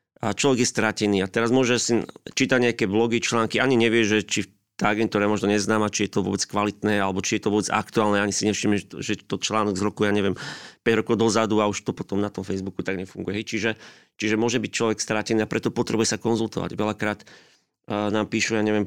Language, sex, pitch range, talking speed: Slovak, male, 105-120 Hz, 220 wpm